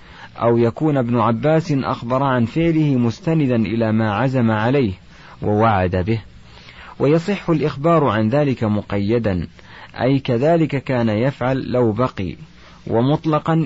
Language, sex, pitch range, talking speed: Arabic, male, 105-140 Hz, 115 wpm